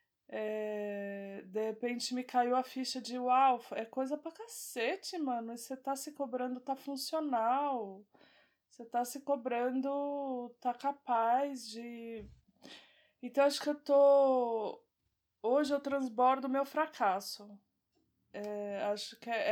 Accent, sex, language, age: Brazilian, female, Portuguese, 20-39